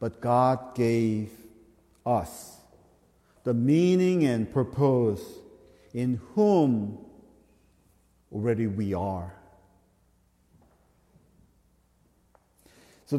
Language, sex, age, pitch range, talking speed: English, male, 50-69, 105-150 Hz, 65 wpm